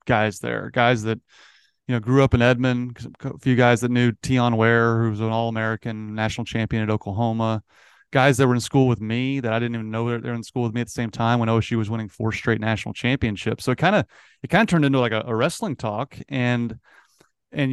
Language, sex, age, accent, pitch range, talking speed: English, male, 30-49, American, 110-125 Hz, 235 wpm